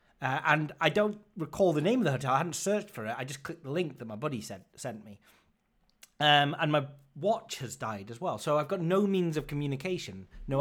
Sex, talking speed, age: male, 240 wpm, 30-49